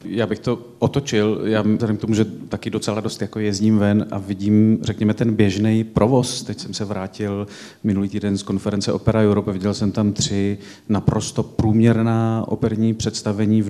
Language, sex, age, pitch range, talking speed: Czech, male, 40-59, 110-115 Hz, 170 wpm